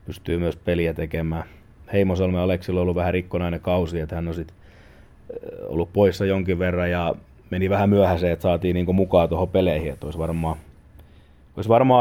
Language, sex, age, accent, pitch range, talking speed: Finnish, male, 30-49, native, 80-95 Hz, 165 wpm